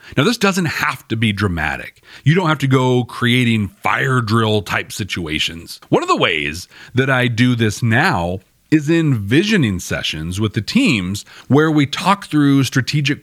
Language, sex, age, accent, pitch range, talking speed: English, male, 40-59, American, 105-150 Hz, 170 wpm